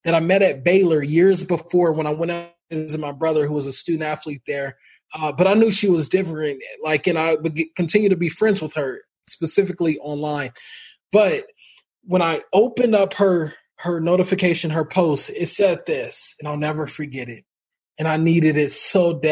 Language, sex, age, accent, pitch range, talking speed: English, male, 20-39, American, 150-190 Hz, 195 wpm